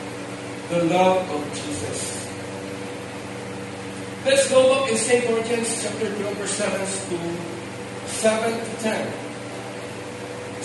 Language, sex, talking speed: English, male, 100 wpm